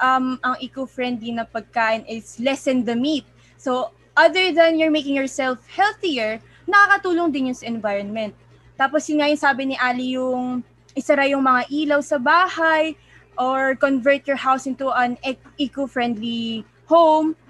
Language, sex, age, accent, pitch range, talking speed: Filipino, female, 20-39, native, 250-325 Hz, 145 wpm